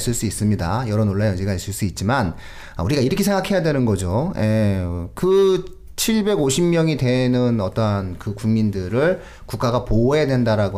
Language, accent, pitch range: Korean, native, 100-160 Hz